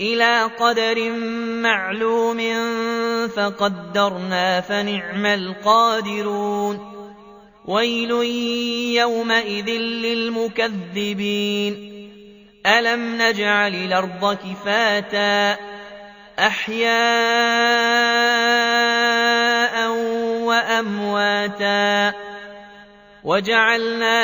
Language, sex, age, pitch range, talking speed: Arabic, male, 20-39, 190-230 Hz, 40 wpm